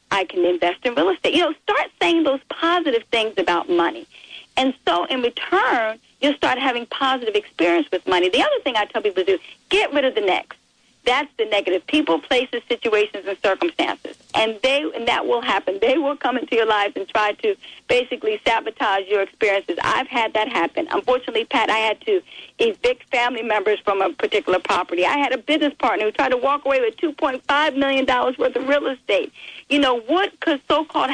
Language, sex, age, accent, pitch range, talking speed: English, female, 40-59, American, 215-295 Hz, 200 wpm